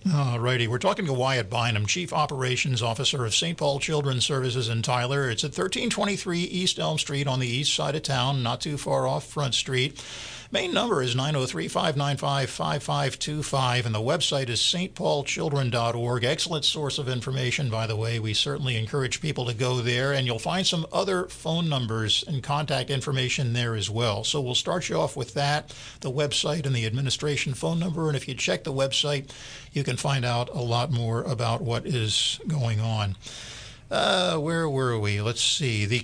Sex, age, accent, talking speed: male, 50-69, American, 185 wpm